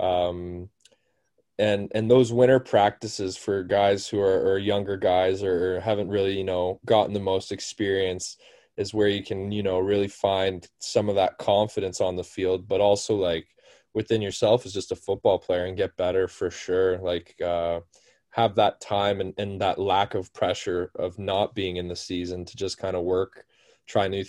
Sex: male